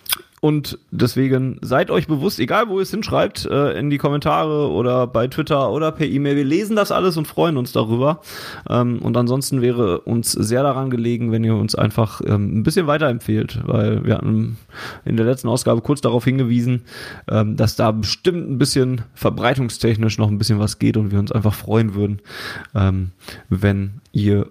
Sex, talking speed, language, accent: male, 170 wpm, German, German